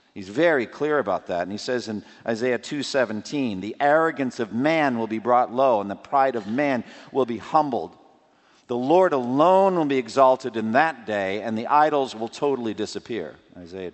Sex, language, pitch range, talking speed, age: male, English, 115-190 Hz, 185 wpm, 50-69